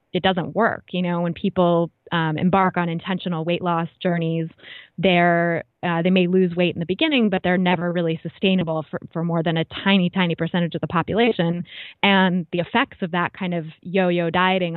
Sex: female